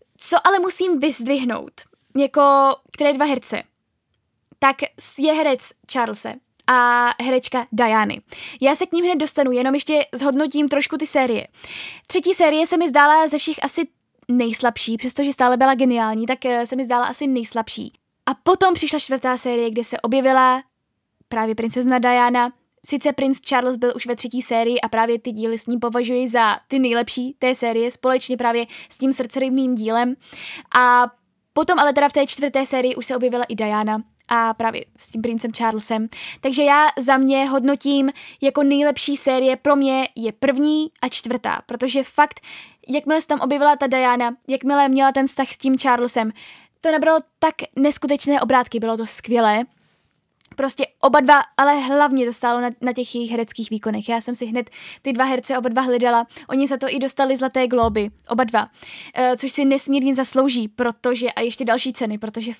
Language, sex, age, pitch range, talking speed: Czech, female, 10-29, 240-280 Hz, 175 wpm